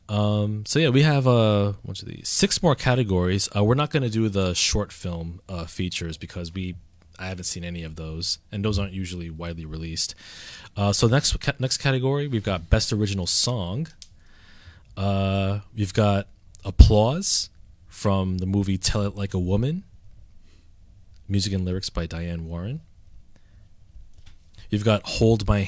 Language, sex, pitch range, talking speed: English, male, 90-105 Hz, 160 wpm